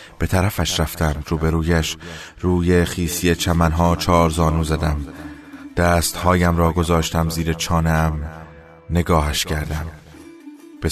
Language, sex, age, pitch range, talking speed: Persian, male, 30-49, 80-90 Hz, 95 wpm